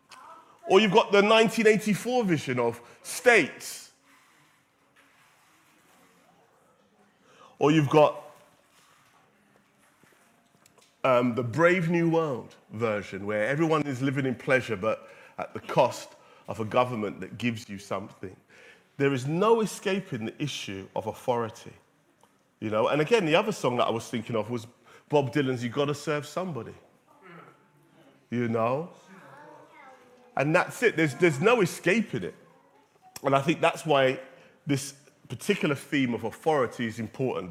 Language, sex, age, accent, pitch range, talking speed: English, male, 30-49, British, 120-180 Hz, 135 wpm